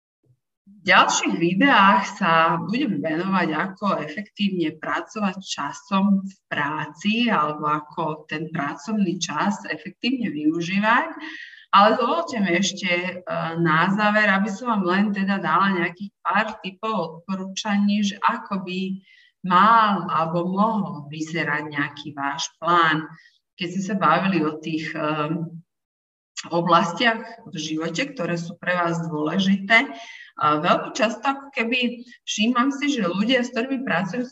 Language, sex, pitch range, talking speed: Slovak, female, 160-215 Hz, 120 wpm